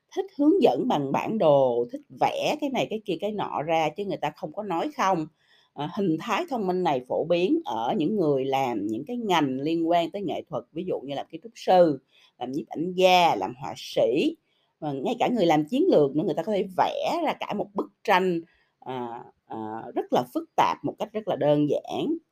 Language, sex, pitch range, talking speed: Vietnamese, female, 145-215 Hz, 230 wpm